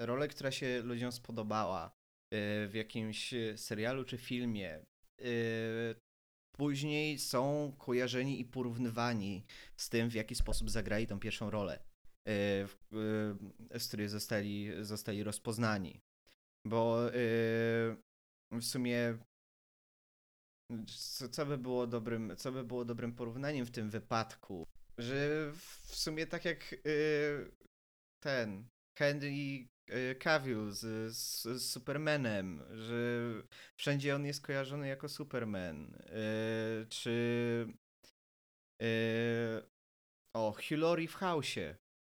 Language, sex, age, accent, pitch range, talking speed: Polish, male, 20-39, native, 110-130 Hz, 95 wpm